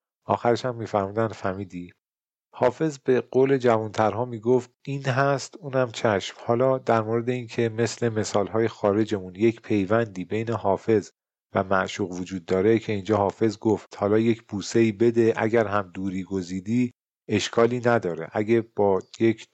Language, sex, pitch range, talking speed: Persian, male, 95-115 Hz, 140 wpm